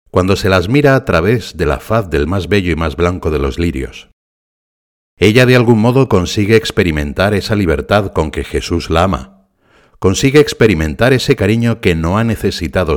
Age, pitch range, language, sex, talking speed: 60-79, 80-110 Hz, Spanish, male, 180 wpm